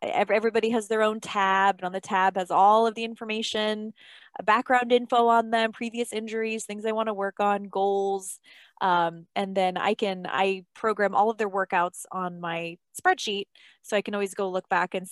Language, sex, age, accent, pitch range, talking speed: English, female, 20-39, American, 185-220 Hz, 195 wpm